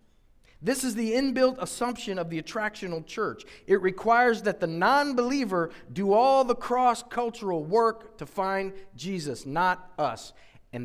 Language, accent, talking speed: English, American, 140 wpm